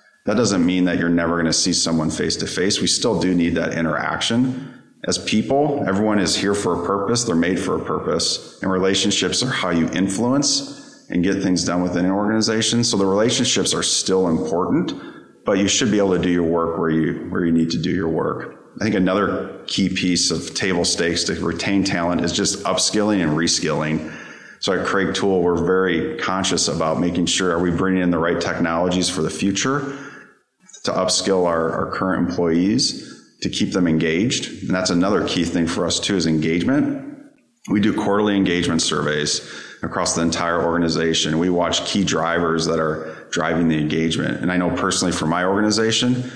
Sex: male